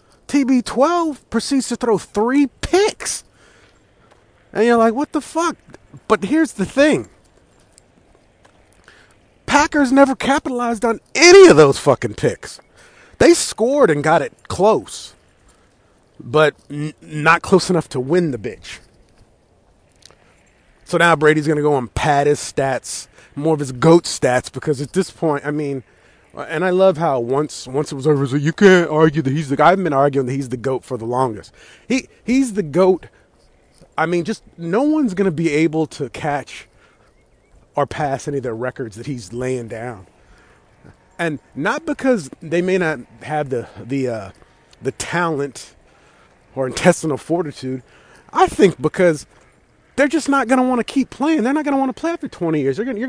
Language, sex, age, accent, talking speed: English, male, 30-49, American, 170 wpm